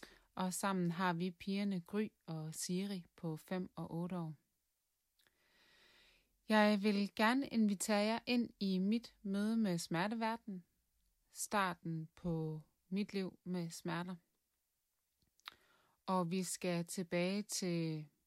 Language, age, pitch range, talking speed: Danish, 30-49, 160-190 Hz, 115 wpm